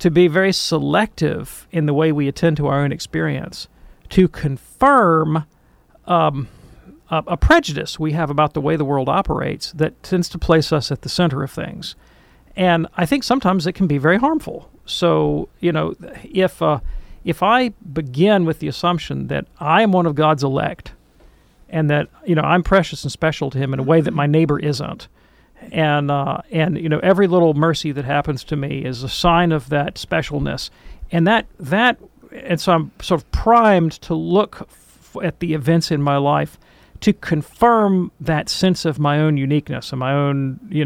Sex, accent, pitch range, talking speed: male, American, 145-175 Hz, 190 wpm